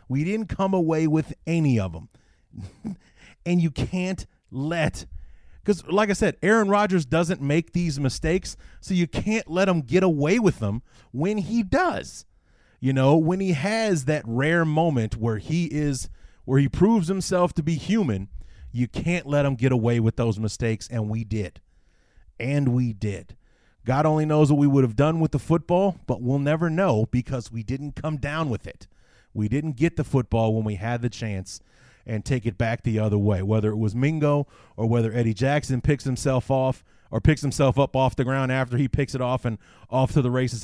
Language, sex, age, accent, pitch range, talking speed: English, male, 30-49, American, 110-155 Hz, 200 wpm